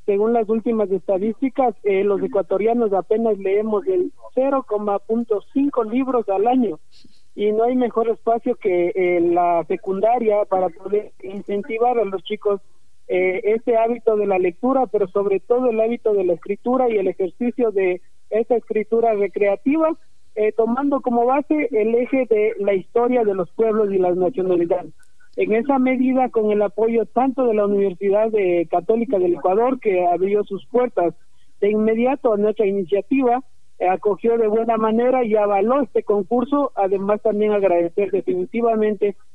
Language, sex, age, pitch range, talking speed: Spanish, male, 50-69, 195-235 Hz, 155 wpm